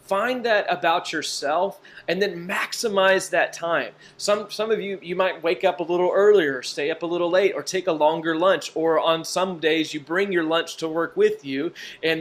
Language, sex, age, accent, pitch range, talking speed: English, male, 30-49, American, 155-195 Hz, 210 wpm